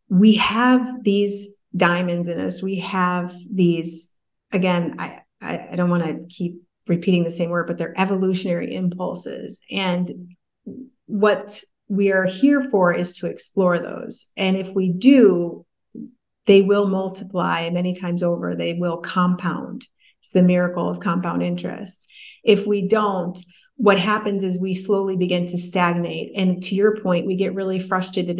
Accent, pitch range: American, 175-205 Hz